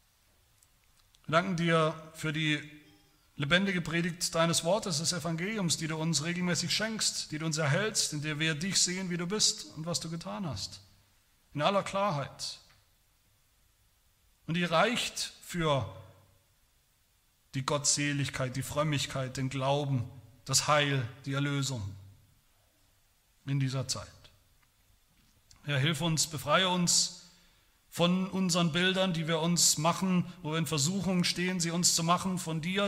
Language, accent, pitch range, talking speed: German, German, 120-180 Hz, 140 wpm